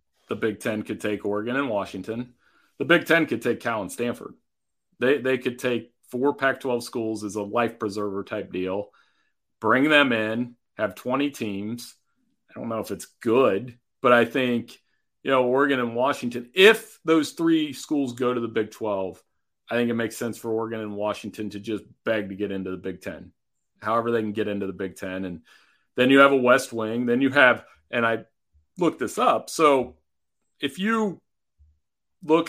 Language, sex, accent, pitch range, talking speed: English, male, American, 105-130 Hz, 195 wpm